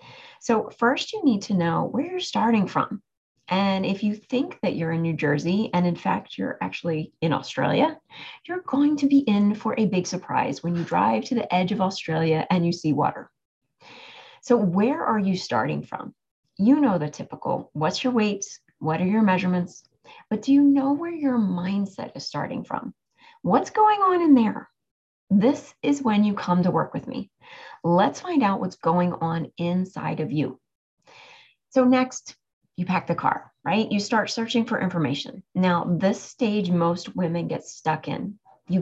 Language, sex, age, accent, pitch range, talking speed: English, female, 30-49, American, 180-265 Hz, 180 wpm